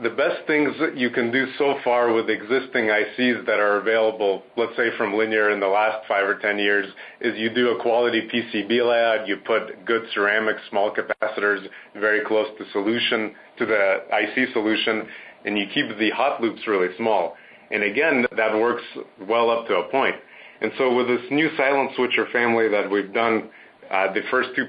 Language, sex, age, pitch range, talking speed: English, male, 30-49, 105-125 Hz, 190 wpm